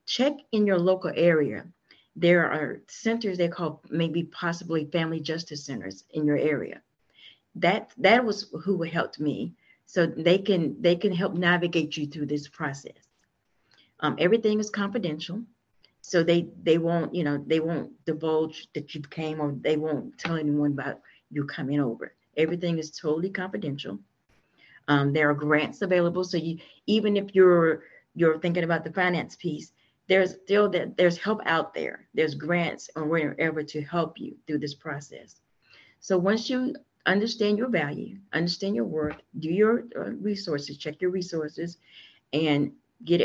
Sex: female